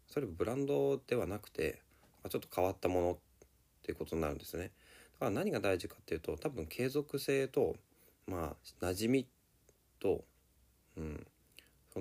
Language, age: Japanese, 40-59